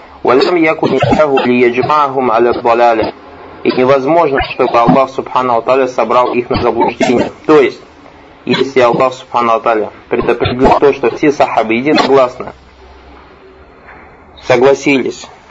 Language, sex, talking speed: Russian, male, 90 wpm